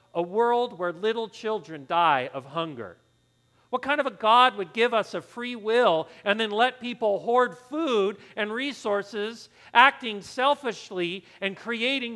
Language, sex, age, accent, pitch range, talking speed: English, male, 40-59, American, 150-240 Hz, 155 wpm